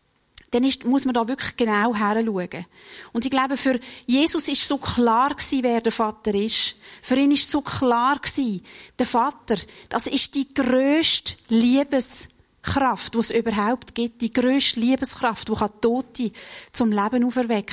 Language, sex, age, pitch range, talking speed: German, female, 40-59, 220-255 Hz, 155 wpm